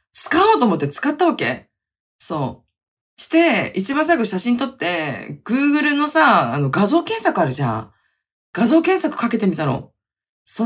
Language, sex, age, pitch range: Japanese, female, 20-39, 185-290 Hz